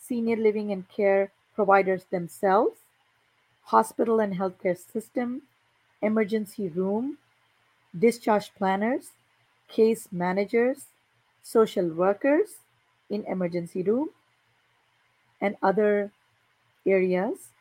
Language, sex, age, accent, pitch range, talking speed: English, female, 40-59, Indian, 190-240 Hz, 80 wpm